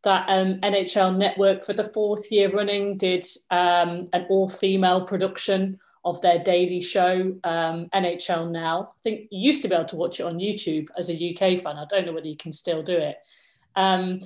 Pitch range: 175-195 Hz